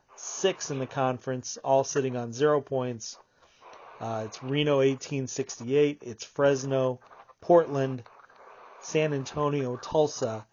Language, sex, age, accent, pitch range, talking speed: English, male, 40-59, American, 120-145 Hz, 110 wpm